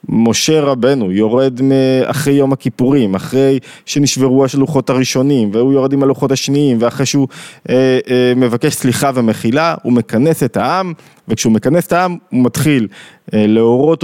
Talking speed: 140 wpm